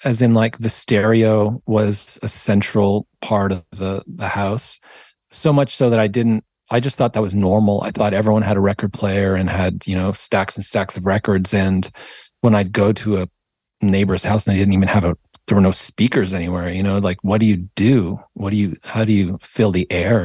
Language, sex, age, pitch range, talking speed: English, male, 40-59, 95-110 Hz, 225 wpm